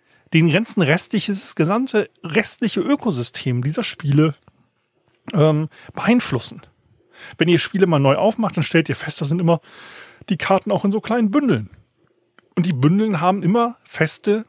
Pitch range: 140-195 Hz